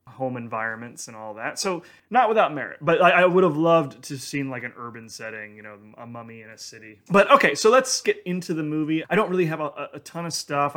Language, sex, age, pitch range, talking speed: English, male, 20-39, 120-150 Hz, 250 wpm